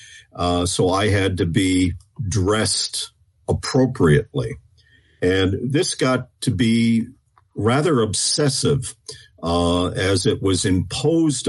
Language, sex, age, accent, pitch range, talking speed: English, male, 50-69, American, 100-140 Hz, 105 wpm